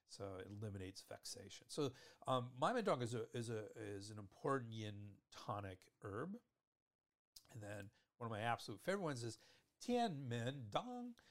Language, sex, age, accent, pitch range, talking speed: English, male, 50-69, American, 100-135 Hz, 150 wpm